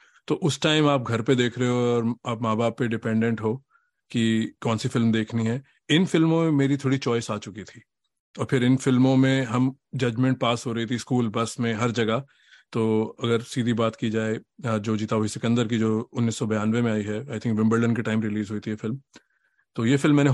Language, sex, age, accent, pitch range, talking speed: Hindi, male, 30-49, native, 110-125 Hz, 225 wpm